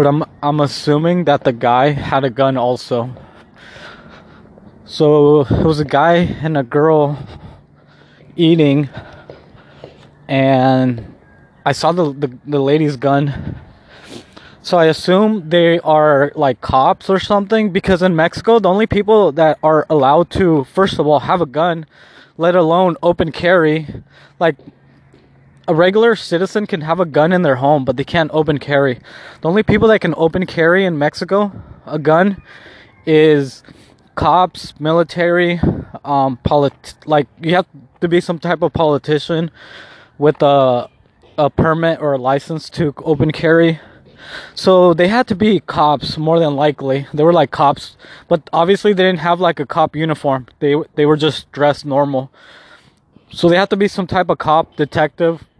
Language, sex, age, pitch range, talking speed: English, male, 20-39, 145-175 Hz, 155 wpm